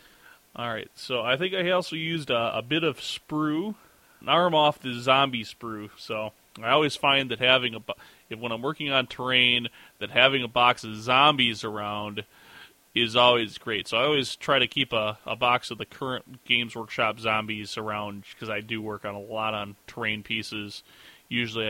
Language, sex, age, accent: English, male, 20-39, American